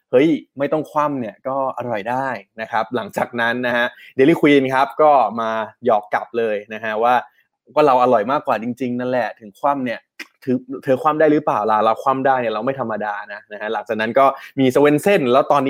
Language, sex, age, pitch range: Thai, male, 20-39, 115-145 Hz